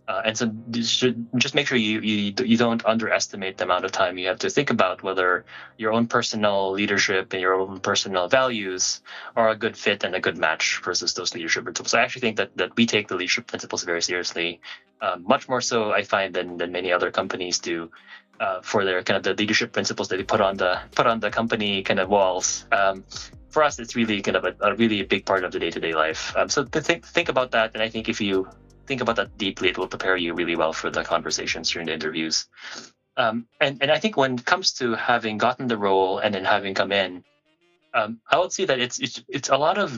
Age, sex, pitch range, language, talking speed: 20-39, male, 95-120 Hz, Filipino, 245 wpm